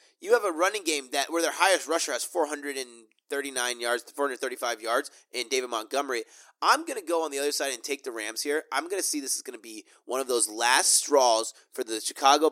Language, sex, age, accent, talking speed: English, male, 30-49, American, 275 wpm